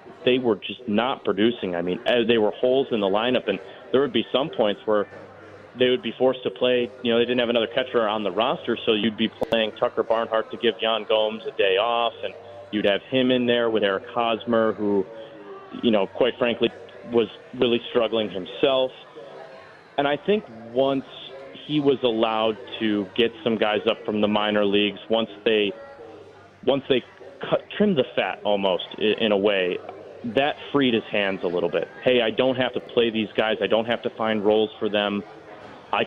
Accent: American